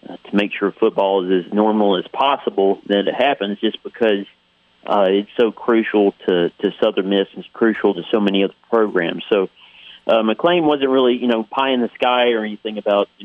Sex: male